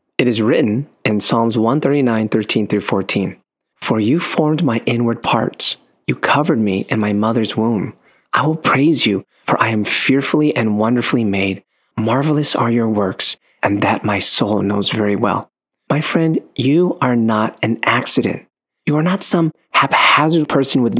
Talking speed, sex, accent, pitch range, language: 160 wpm, male, American, 110-145 Hz, English